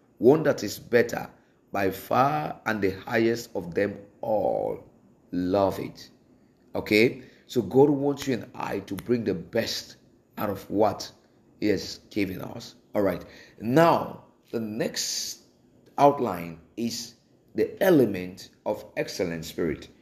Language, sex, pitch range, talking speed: English, male, 105-135 Hz, 130 wpm